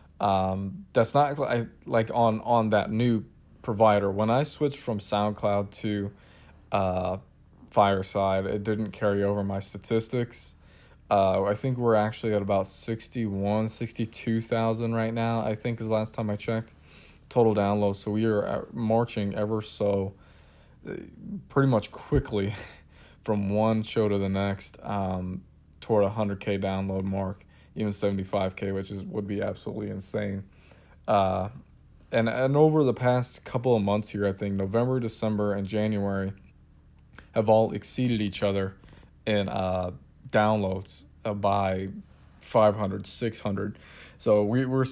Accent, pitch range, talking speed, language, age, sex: American, 95-110 Hz, 140 wpm, English, 20-39, male